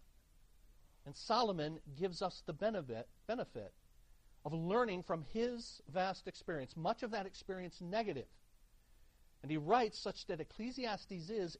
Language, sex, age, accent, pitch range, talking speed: English, male, 50-69, American, 140-190 Hz, 125 wpm